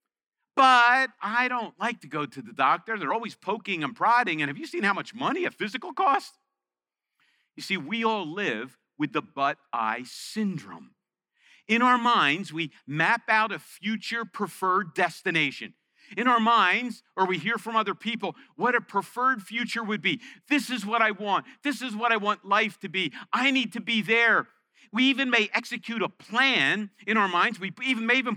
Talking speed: 190 wpm